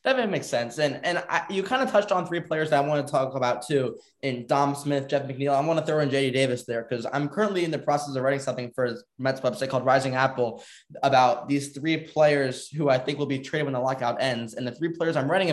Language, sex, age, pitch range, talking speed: English, male, 10-29, 130-170 Hz, 265 wpm